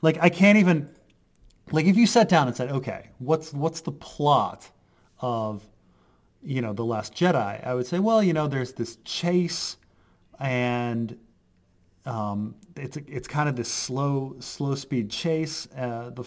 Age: 30-49